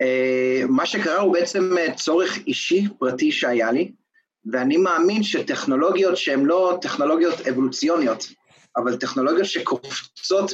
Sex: male